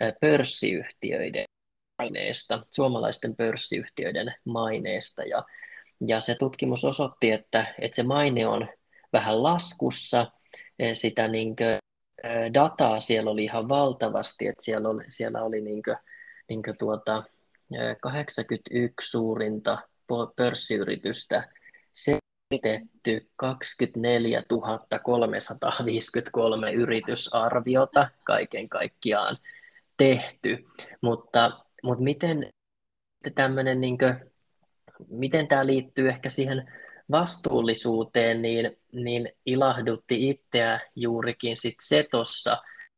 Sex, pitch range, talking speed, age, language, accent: male, 115-135 Hz, 85 wpm, 20-39, Finnish, native